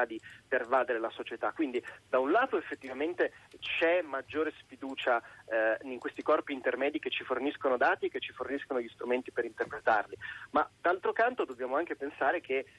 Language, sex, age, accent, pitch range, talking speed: Italian, male, 30-49, native, 130-180 Hz, 170 wpm